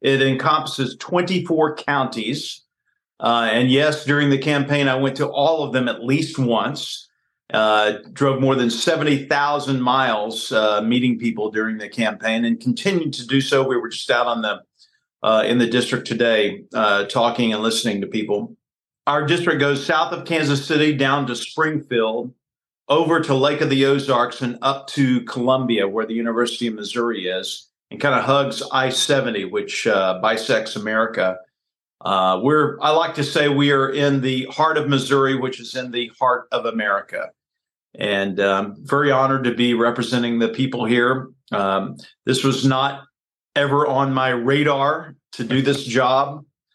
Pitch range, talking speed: 115-140 Hz, 170 wpm